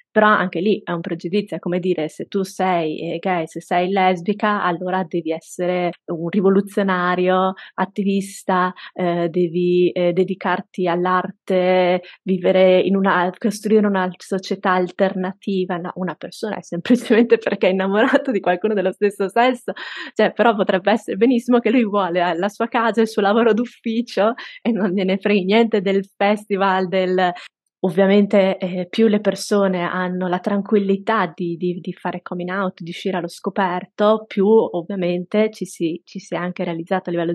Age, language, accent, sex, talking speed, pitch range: 20-39, Italian, native, female, 160 wpm, 180-210 Hz